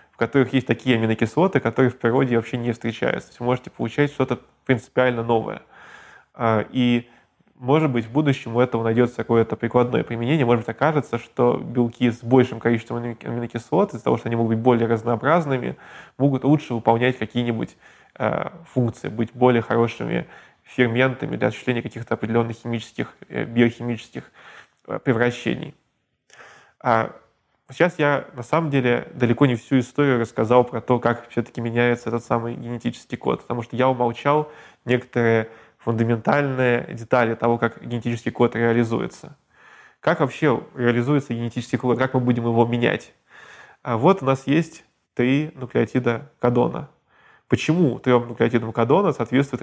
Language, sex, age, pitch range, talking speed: Russian, male, 20-39, 115-130 Hz, 140 wpm